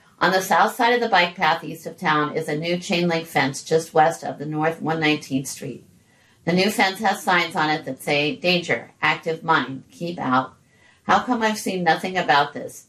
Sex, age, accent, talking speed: female, 50-69, American, 205 wpm